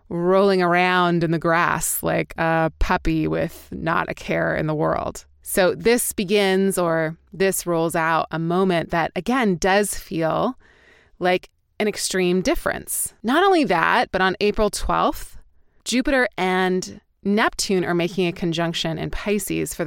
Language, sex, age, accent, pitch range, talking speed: English, female, 20-39, American, 160-200 Hz, 150 wpm